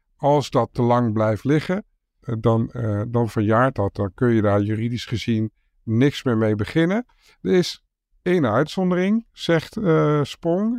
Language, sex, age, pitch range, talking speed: Dutch, male, 50-69, 115-140 Hz, 155 wpm